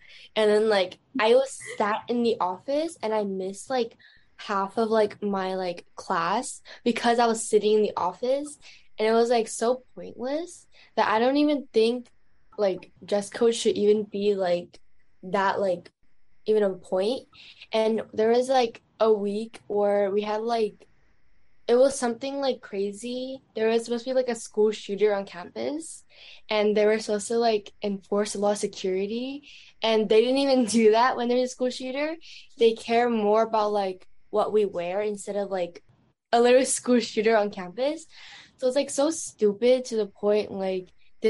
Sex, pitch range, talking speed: female, 200-245 Hz, 180 wpm